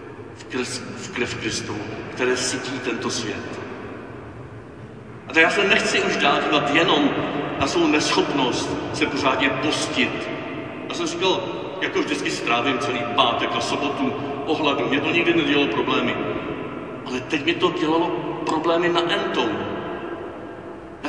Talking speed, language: 135 wpm, Czech